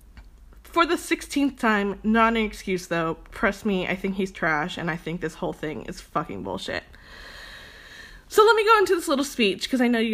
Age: 20-39